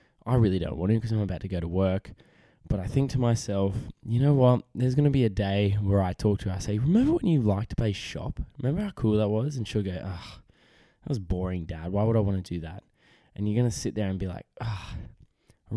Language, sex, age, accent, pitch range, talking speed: English, male, 10-29, Australian, 95-115 Hz, 270 wpm